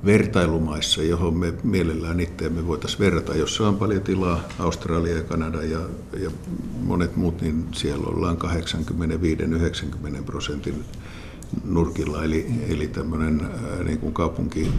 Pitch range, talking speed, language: 75-85 Hz, 115 wpm, Finnish